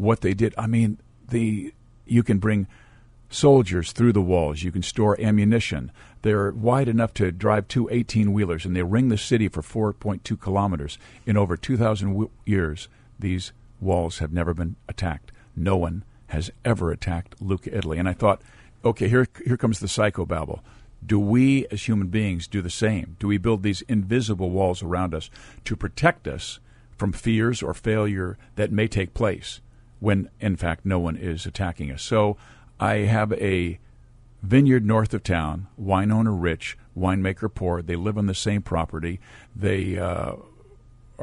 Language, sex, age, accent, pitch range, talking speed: English, male, 50-69, American, 95-115 Hz, 165 wpm